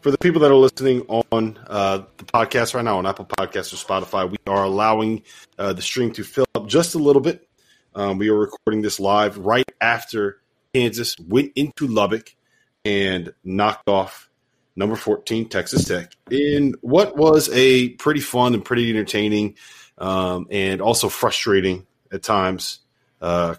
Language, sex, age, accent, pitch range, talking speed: English, male, 30-49, American, 95-125 Hz, 165 wpm